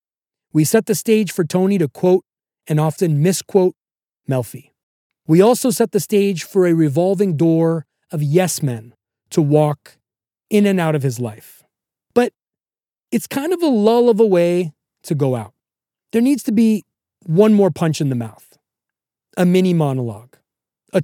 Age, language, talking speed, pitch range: 30-49, English, 160 wpm, 145-200 Hz